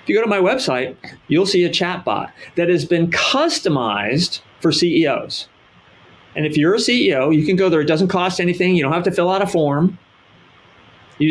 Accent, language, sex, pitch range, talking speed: American, English, male, 135-185 Hz, 205 wpm